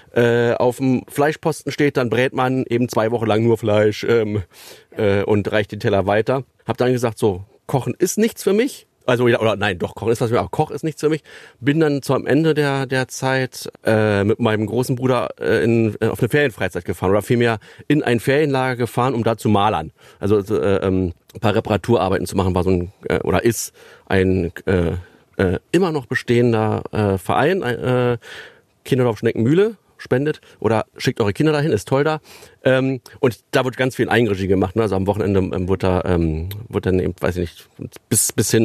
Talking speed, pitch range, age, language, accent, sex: 205 wpm, 105-130 Hz, 40-59, German, German, male